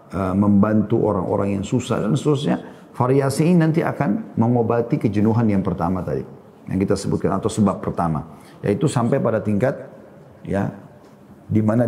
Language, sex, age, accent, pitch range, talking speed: Indonesian, male, 40-59, native, 105-130 Hz, 135 wpm